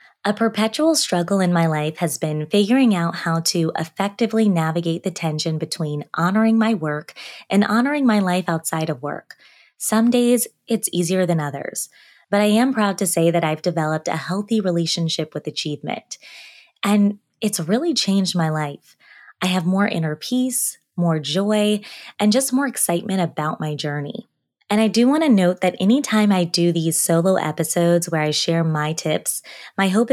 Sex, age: female, 20-39